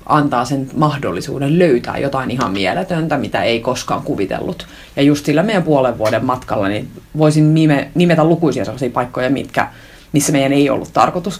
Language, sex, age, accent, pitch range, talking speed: Finnish, female, 30-49, native, 135-165 Hz, 165 wpm